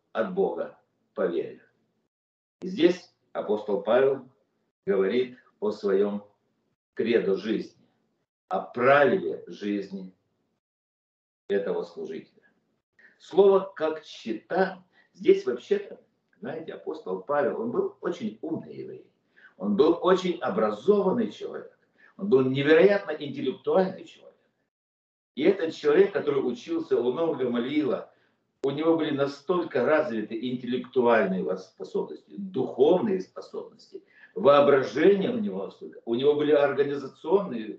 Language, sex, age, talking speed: Russian, male, 50-69, 100 wpm